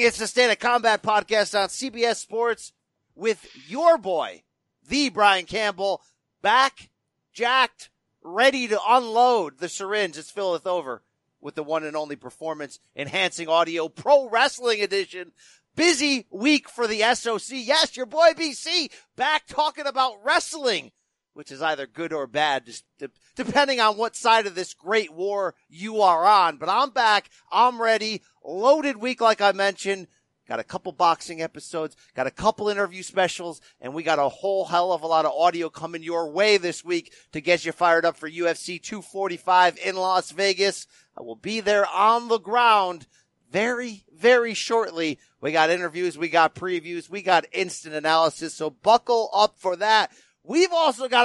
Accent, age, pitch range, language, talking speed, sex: American, 40-59, 170-240 Hz, English, 165 wpm, male